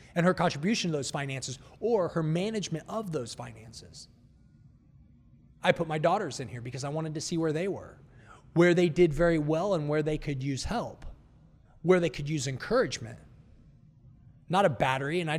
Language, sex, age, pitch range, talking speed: English, male, 30-49, 130-180 Hz, 185 wpm